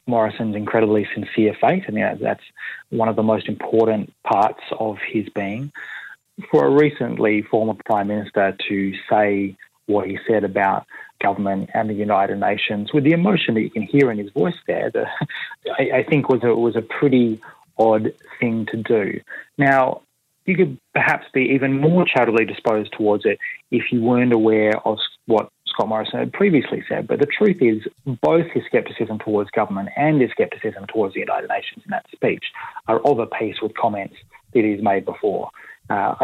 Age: 30-49